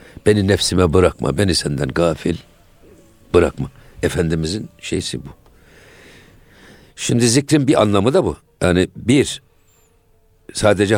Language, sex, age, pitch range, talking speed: Turkish, male, 60-79, 90-120 Hz, 105 wpm